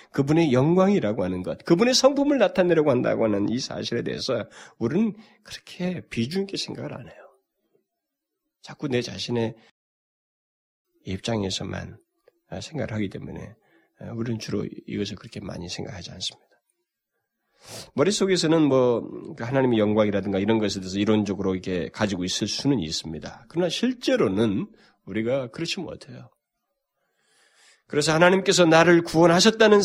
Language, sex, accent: Korean, male, native